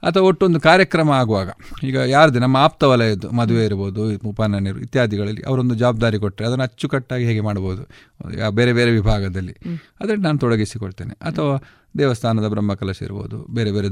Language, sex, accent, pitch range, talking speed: Kannada, male, native, 105-145 Hz, 140 wpm